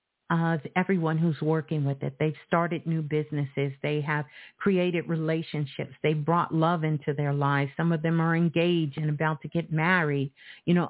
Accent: American